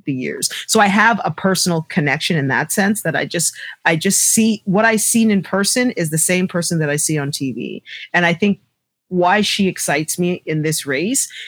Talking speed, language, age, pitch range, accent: 210 wpm, English, 40-59, 155-210 Hz, American